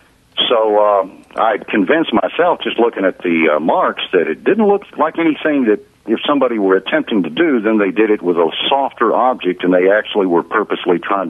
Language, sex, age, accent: English, male, 60-79, American